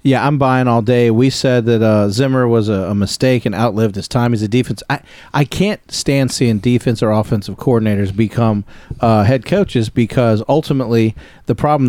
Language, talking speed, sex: English, 190 wpm, male